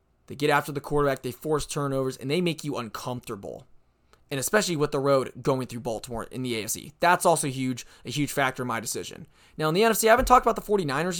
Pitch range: 125-155 Hz